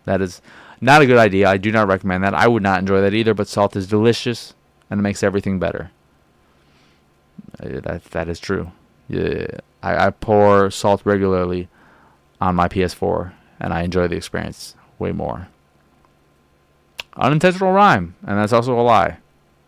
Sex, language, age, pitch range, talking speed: male, English, 20-39, 95-120 Hz, 160 wpm